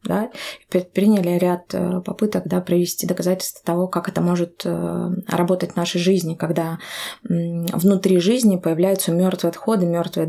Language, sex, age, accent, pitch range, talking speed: Russian, female, 20-39, native, 170-190 Hz, 135 wpm